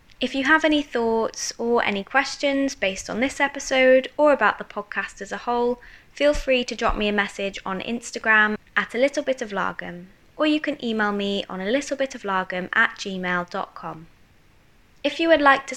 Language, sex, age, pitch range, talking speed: English, female, 20-39, 190-245 Hz, 190 wpm